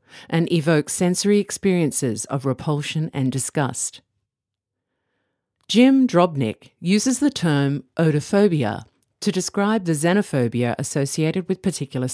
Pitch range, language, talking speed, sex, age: 135-190 Hz, English, 105 wpm, female, 50-69